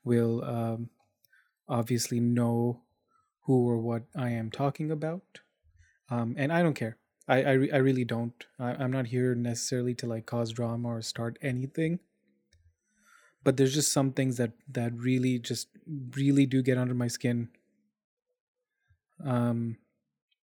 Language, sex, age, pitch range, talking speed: English, male, 20-39, 120-145 Hz, 145 wpm